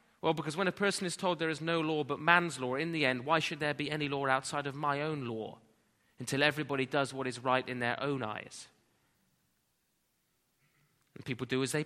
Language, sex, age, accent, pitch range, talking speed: English, male, 30-49, British, 135-175 Hz, 220 wpm